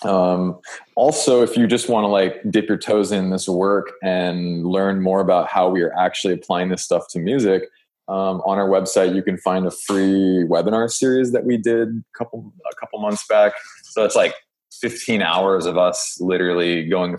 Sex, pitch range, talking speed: male, 85-105 Hz, 195 wpm